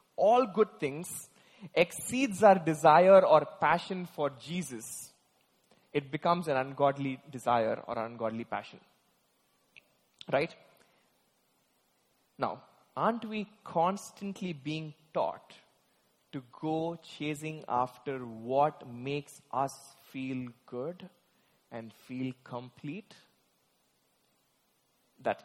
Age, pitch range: 20-39, 125-165 Hz